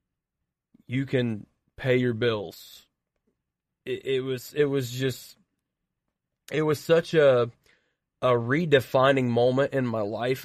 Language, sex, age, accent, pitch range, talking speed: English, male, 30-49, American, 120-140 Hz, 120 wpm